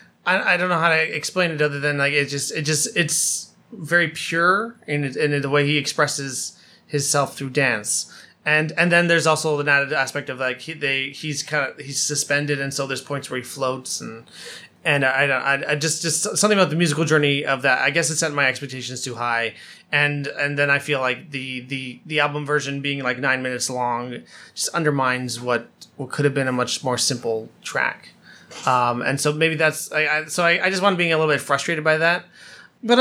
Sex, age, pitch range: male, 20-39, 130-160 Hz